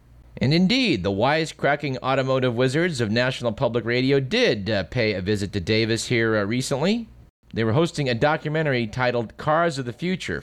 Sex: male